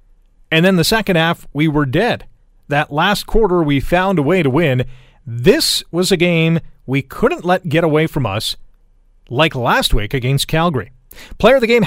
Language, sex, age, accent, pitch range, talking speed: English, male, 40-59, American, 125-180 Hz, 185 wpm